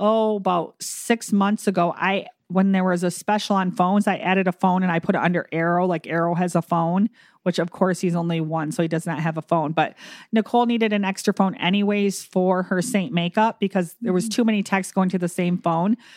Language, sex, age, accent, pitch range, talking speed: English, female, 40-59, American, 175-205 Hz, 235 wpm